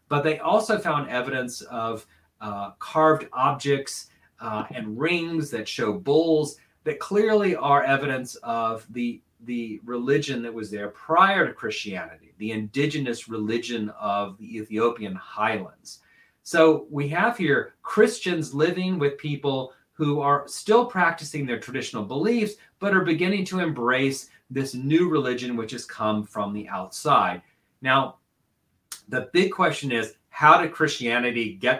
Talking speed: 140 wpm